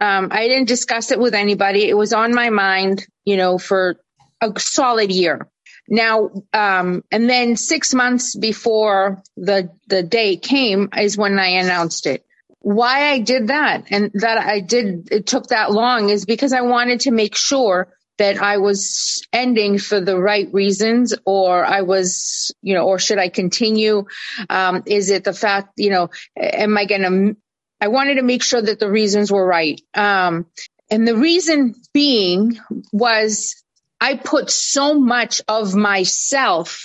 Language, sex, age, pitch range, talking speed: English, female, 30-49, 195-240 Hz, 170 wpm